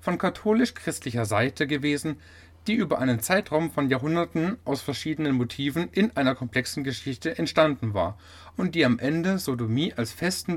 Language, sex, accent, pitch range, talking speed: German, male, German, 115-160 Hz, 150 wpm